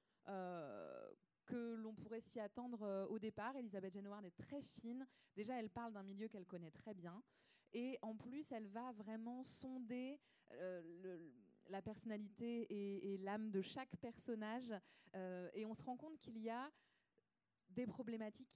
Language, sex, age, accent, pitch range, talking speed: French, female, 20-39, French, 175-215 Hz, 165 wpm